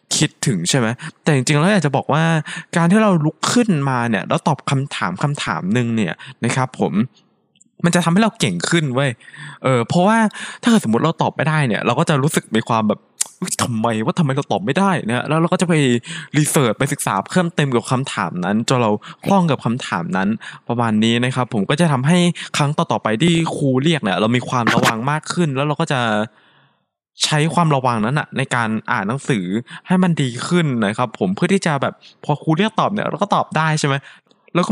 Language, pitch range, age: Thai, 125-175 Hz, 20-39